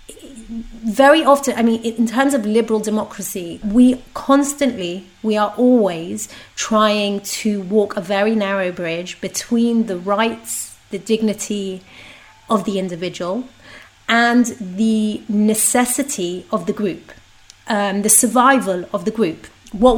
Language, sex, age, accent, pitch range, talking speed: English, female, 30-49, British, 200-235 Hz, 125 wpm